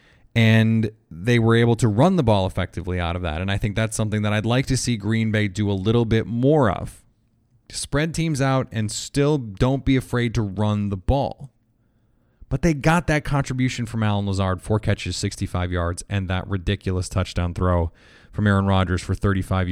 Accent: American